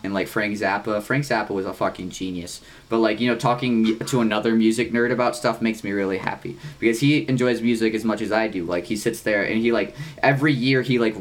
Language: English